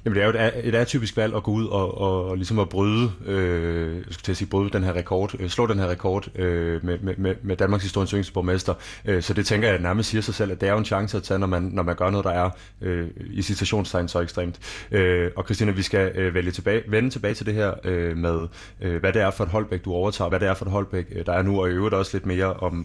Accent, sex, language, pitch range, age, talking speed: native, male, Danish, 90-105 Hz, 30-49, 275 wpm